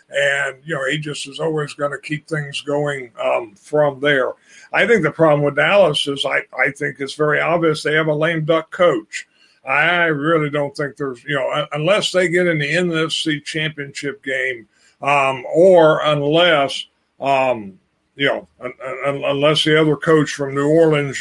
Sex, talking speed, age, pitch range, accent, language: male, 185 wpm, 50-69, 140-160 Hz, American, English